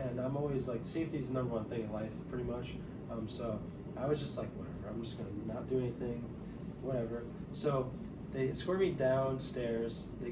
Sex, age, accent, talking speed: male, 20-39, American, 200 wpm